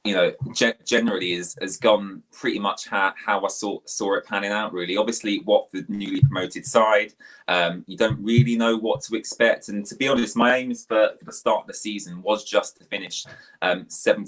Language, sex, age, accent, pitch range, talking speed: English, male, 20-39, British, 95-120 Hz, 205 wpm